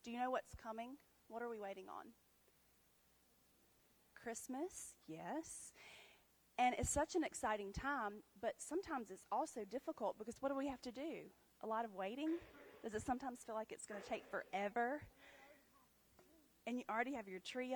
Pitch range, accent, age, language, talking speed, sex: 200-255 Hz, American, 30-49, English, 165 wpm, female